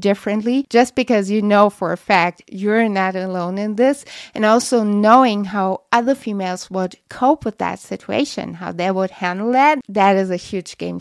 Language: English